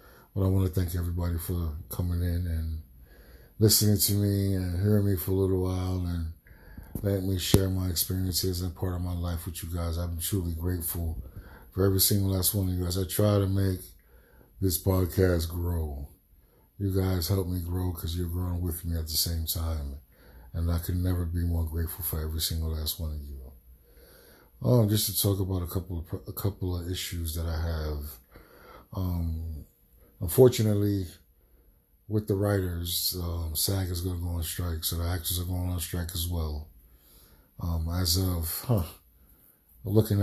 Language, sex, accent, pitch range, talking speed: English, male, American, 80-95 Hz, 185 wpm